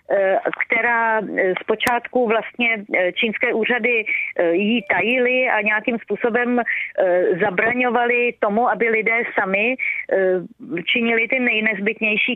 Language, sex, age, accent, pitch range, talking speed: Czech, female, 30-49, native, 195-230 Hz, 85 wpm